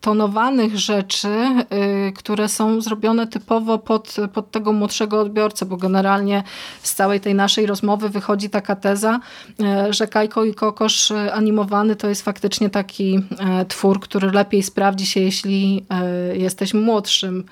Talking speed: 125 wpm